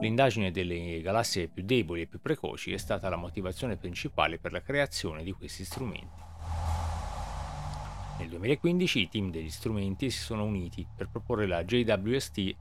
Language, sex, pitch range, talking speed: Italian, male, 85-120 Hz, 150 wpm